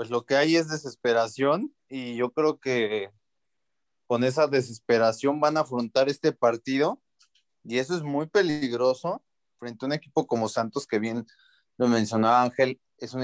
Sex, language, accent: male, Spanish, Mexican